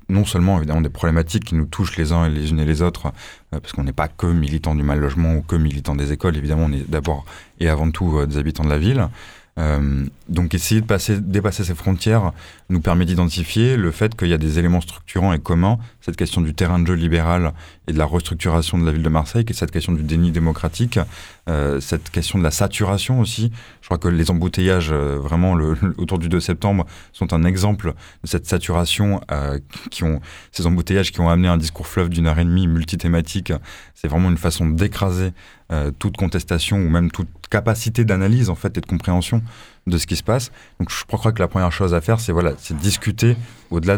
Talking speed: 225 wpm